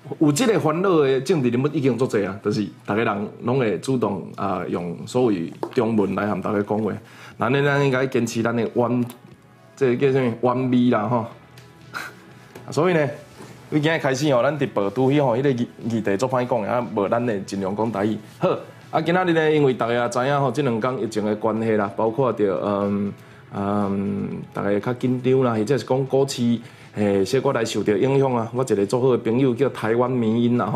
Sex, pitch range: male, 110-135 Hz